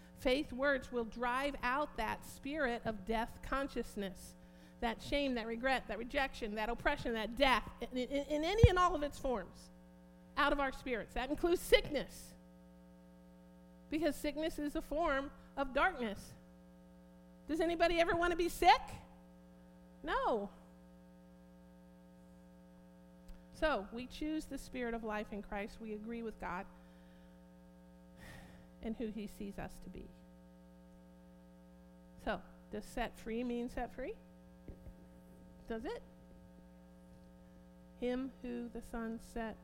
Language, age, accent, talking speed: English, 50-69, American, 130 wpm